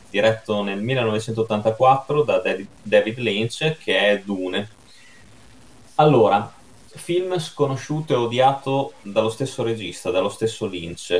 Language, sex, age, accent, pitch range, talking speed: Italian, male, 20-39, native, 90-110 Hz, 105 wpm